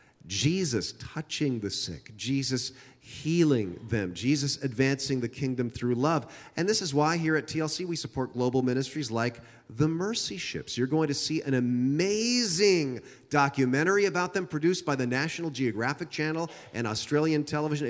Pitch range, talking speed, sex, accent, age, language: 125-160 Hz, 155 wpm, male, American, 40-59, English